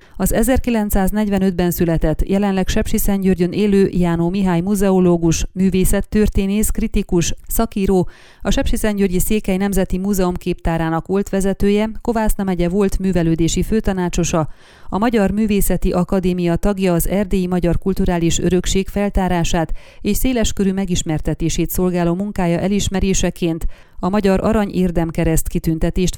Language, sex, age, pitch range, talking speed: Hungarian, female, 30-49, 175-200 Hz, 105 wpm